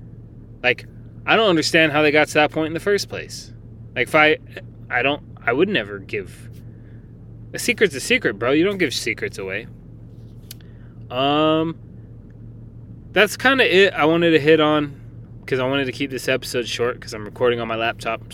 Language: English